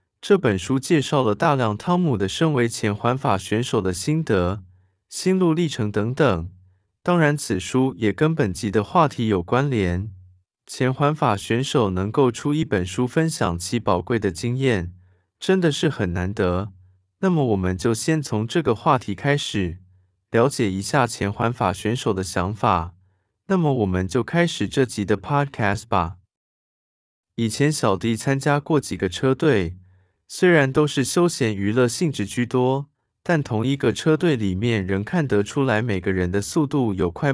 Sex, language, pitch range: male, Chinese, 95-140 Hz